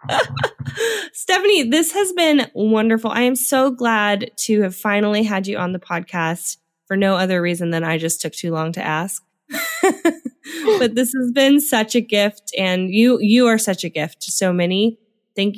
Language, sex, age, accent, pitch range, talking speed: English, female, 20-39, American, 165-210 Hz, 180 wpm